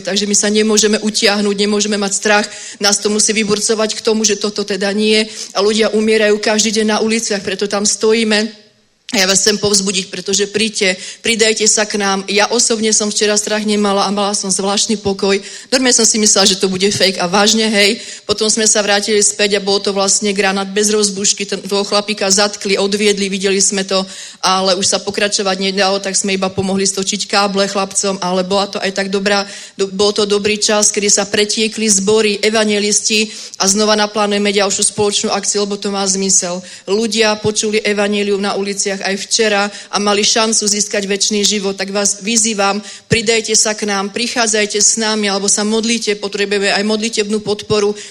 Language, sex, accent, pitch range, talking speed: Czech, female, native, 200-215 Hz, 185 wpm